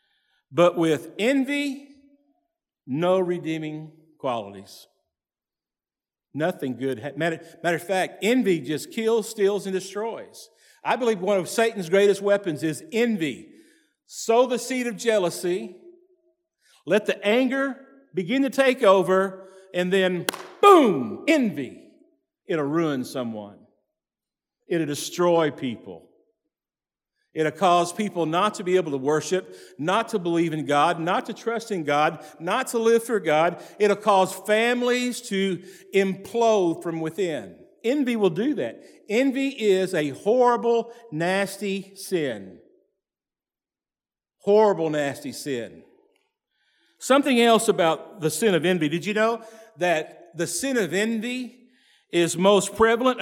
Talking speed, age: 125 wpm, 50-69